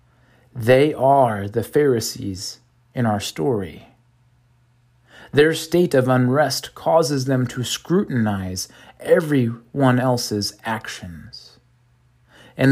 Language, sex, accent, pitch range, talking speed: English, male, American, 115-135 Hz, 90 wpm